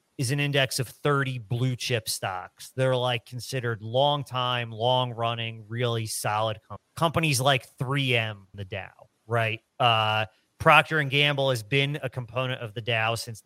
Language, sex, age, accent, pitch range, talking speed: English, male, 30-49, American, 115-140 Hz, 155 wpm